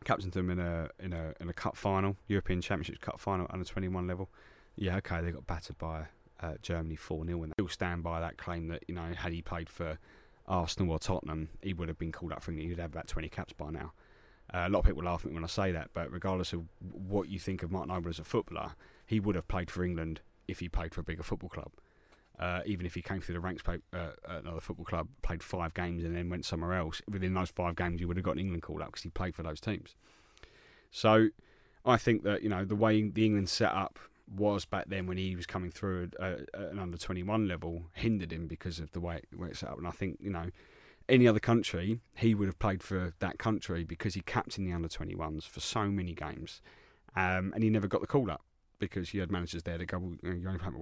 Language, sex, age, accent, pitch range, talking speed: English, male, 30-49, British, 85-100 Hz, 255 wpm